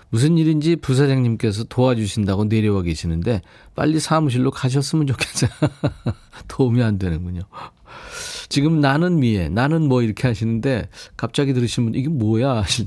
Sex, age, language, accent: male, 40-59, Korean, native